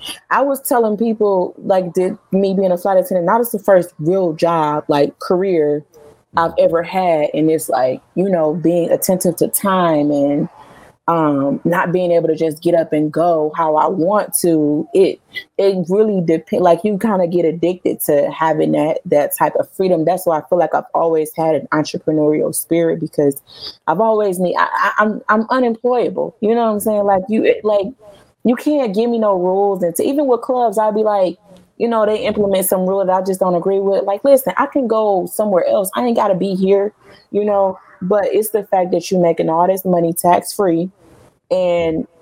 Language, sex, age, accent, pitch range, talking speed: English, female, 20-39, American, 165-210 Hz, 205 wpm